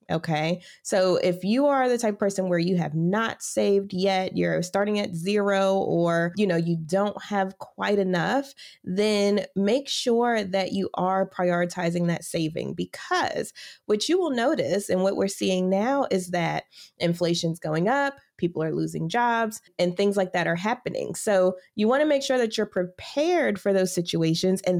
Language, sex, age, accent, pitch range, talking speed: English, female, 20-39, American, 180-225 Hz, 180 wpm